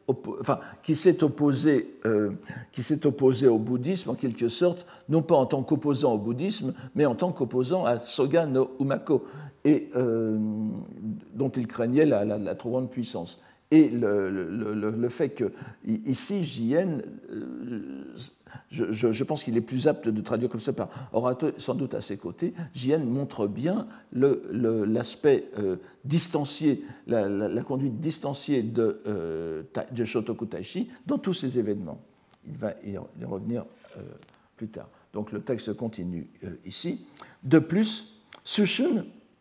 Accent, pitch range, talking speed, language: French, 110-170 Hz, 160 wpm, French